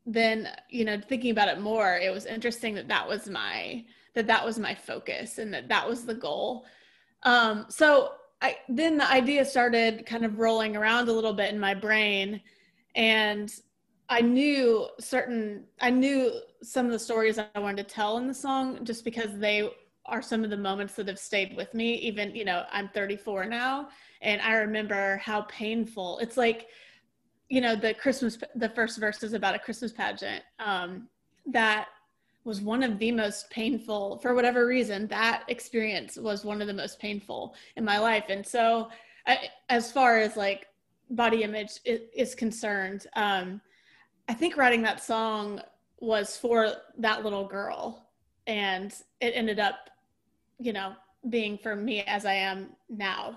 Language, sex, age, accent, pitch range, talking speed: English, female, 30-49, American, 210-240 Hz, 175 wpm